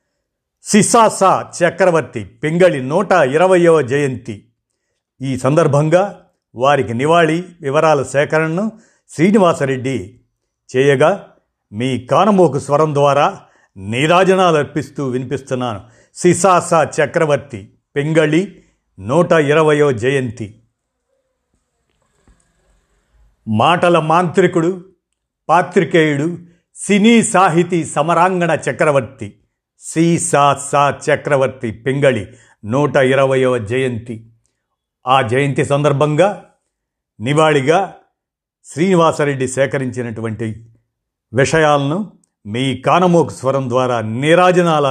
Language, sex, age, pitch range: Telugu, male, 50-69, 130-170 Hz